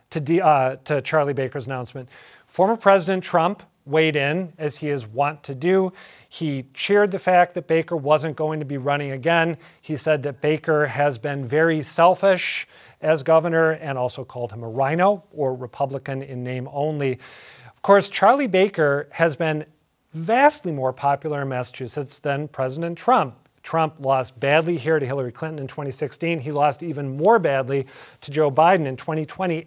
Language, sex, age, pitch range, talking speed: English, male, 40-59, 140-170 Hz, 170 wpm